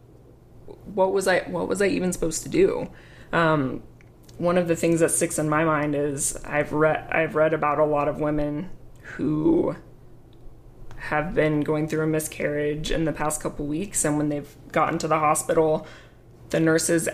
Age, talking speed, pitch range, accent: 20-39, 180 wpm, 150-170 Hz, American